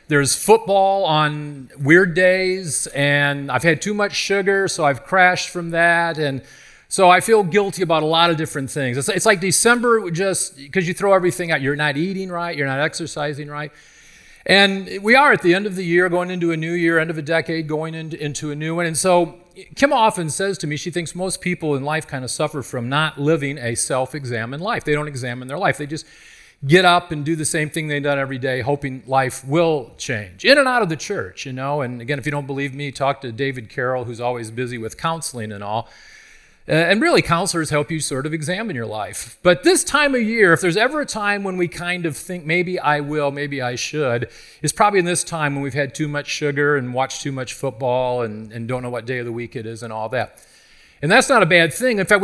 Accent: American